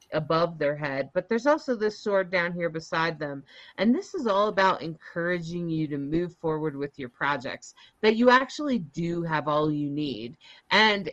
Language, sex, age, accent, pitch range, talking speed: English, female, 30-49, American, 160-210 Hz, 185 wpm